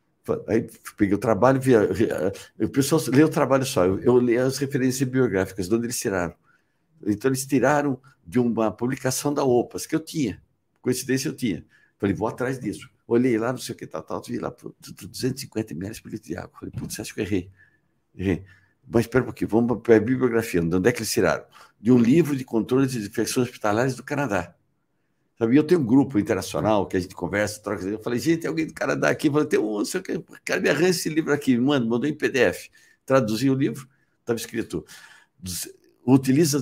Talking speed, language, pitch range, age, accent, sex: 210 wpm, Portuguese, 110-140 Hz, 60-79, Brazilian, male